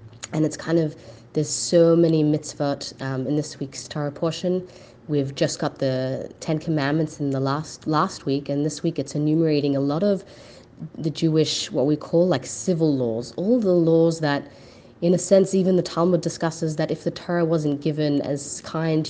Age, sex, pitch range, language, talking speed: 30-49, female, 135-160 Hz, English, 190 wpm